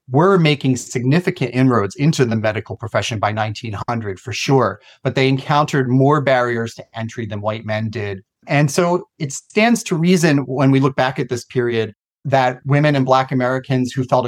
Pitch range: 120-145 Hz